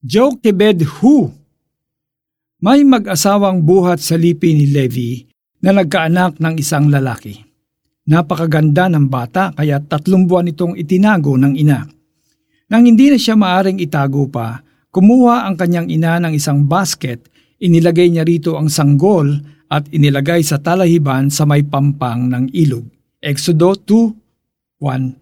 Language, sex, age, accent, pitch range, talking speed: Filipino, male, 50-69, native, 145-185 Hz, 130 wpm